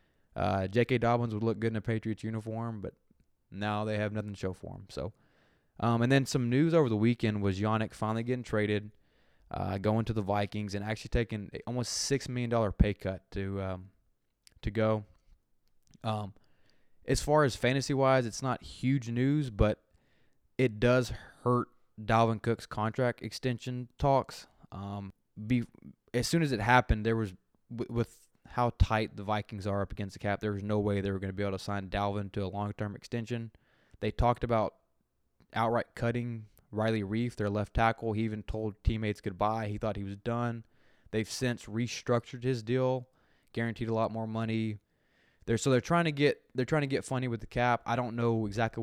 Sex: male